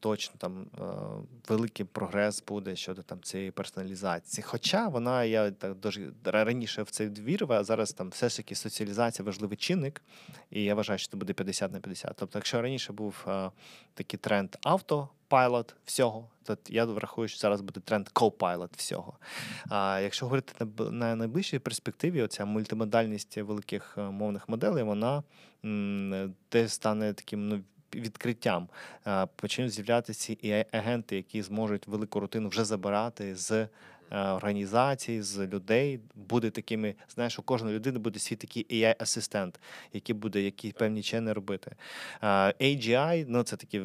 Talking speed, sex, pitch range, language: 145 wpm, male, 100-115 Hz, Ukrainian